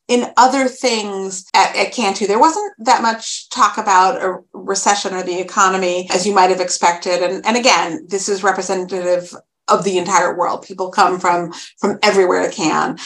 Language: English